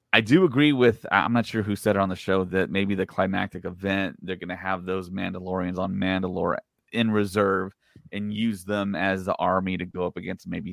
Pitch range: 95-115 Hz